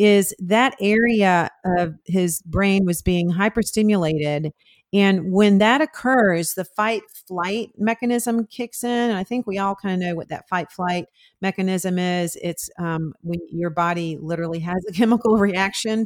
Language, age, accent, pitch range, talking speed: English, 40-59, American, 180-220 Hz, 155 wpm